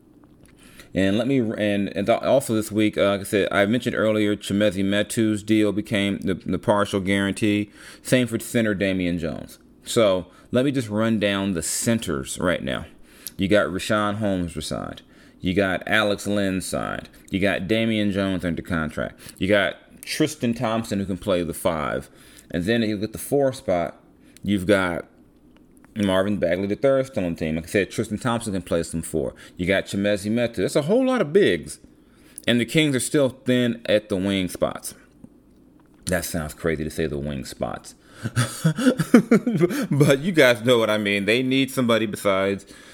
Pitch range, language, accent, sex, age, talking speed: 95-115 Hz, English, American, male, 30-49, 180 wpm